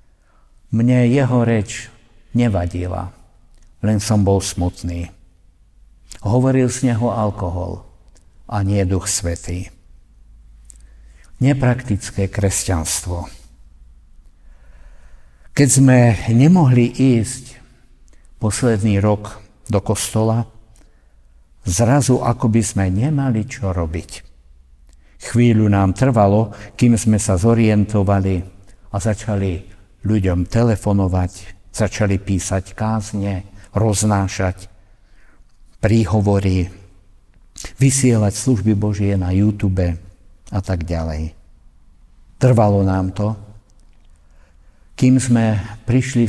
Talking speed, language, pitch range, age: 80 wpm, Slovak, 90-110 Hz, 60-79